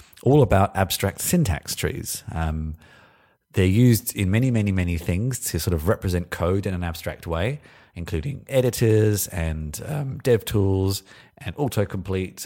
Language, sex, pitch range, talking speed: English, male, 85-110 Hz, 145 wpm